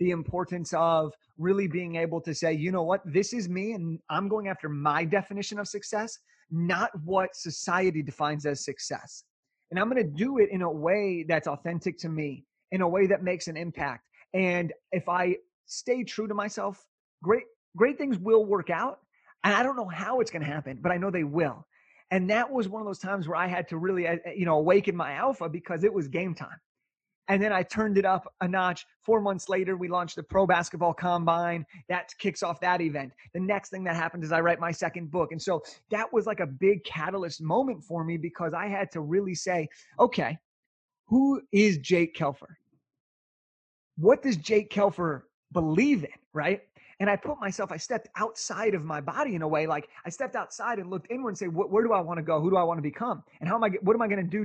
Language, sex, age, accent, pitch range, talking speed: English, male, 30-49, American, 165-205 Hz, 225 wpm